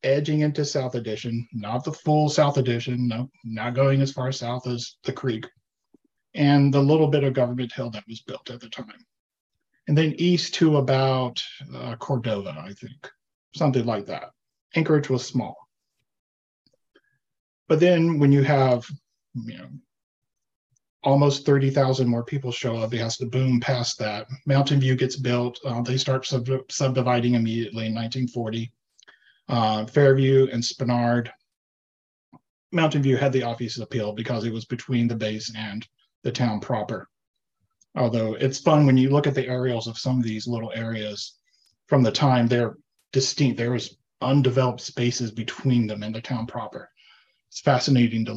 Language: English